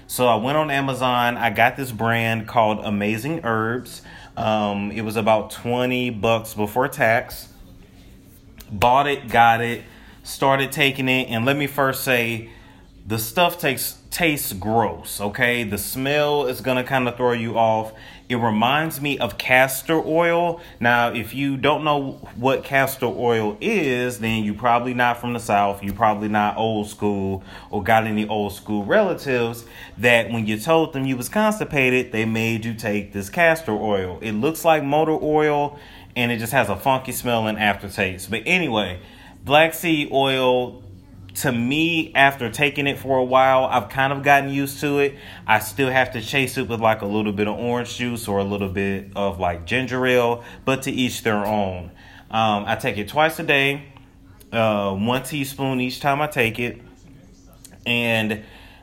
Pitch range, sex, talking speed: 105-135 Hz, male, 175 wpm